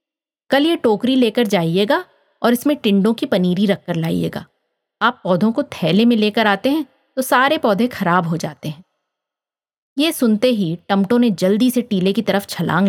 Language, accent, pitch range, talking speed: Hindi, native, 180-250 Hz, 175 wpm